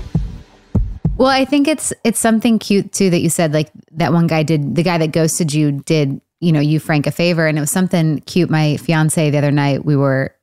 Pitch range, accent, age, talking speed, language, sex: 145-175 Hz, American, 20-39, 230 wpm, English, female